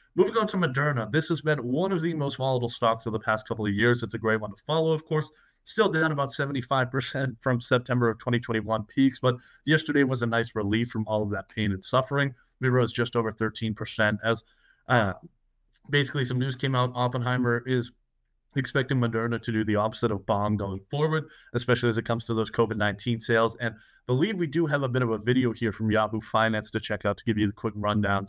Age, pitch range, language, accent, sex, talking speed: 30-49, 115-160 Hz, English, American, male, 225 wpm